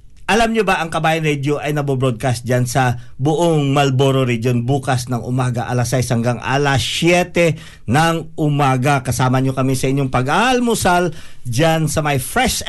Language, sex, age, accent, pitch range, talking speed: Filipino, male, 50-69, native, 130-165 Hz, 155 wpm